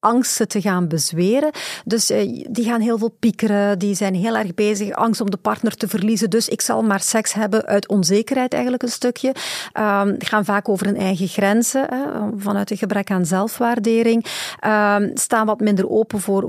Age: 40-59